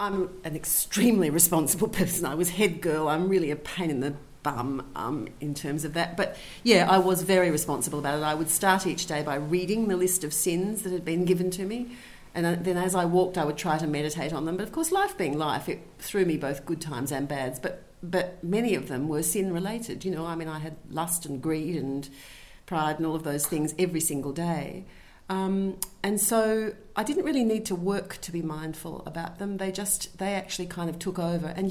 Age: 40-59